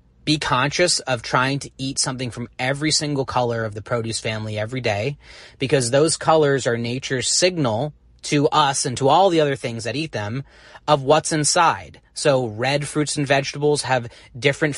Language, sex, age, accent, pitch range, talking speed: English, male, 30-49, American, 115-145 Hz, 180 wpm